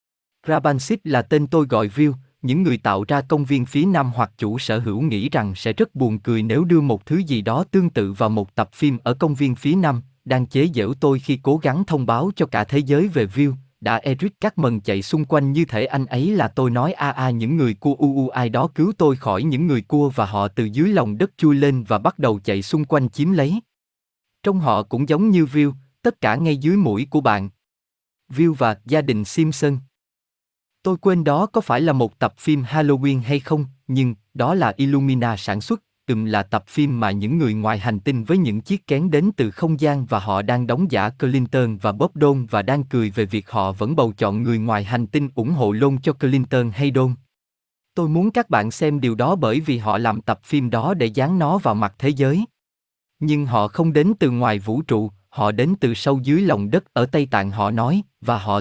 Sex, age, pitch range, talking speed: male, 20-39, 110-150 Hz, 235 wpm